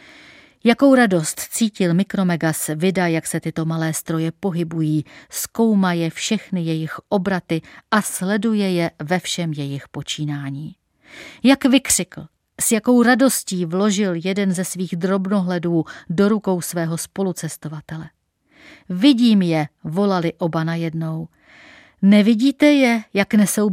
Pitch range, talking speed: 165-215 Hz, 115 wpm